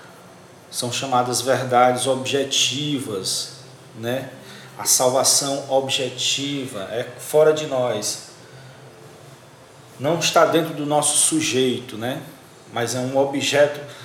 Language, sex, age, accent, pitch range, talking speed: Portuguese, male, 40-59, Brazilian, 130-160 Hz, 100 wpm